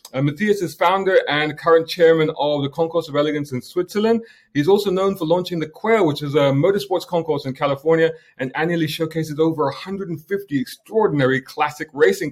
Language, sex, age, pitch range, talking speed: English, male, 30-49, 150-225 Hz, 175 wpm